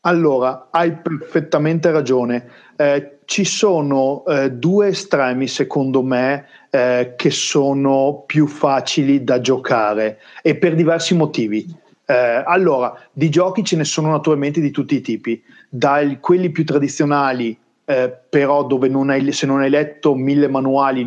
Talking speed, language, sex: 135 wpm, Italian, male